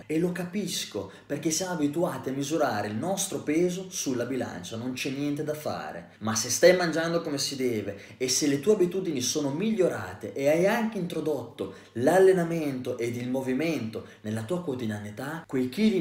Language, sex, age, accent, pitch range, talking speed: Italian, male, 20-39, native, 115-180 Hz, 170 wpm